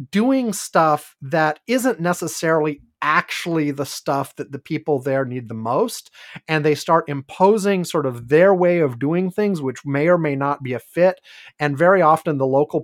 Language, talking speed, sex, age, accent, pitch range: English, 180 wpm, male, 30-49, American, 135-175 Hz